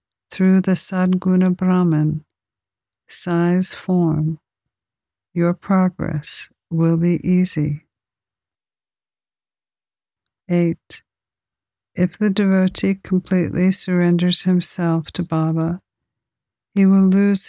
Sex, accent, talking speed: female, American, 80 wpm